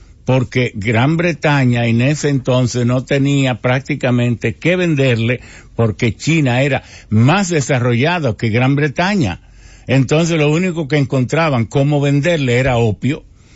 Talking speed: 125 wpm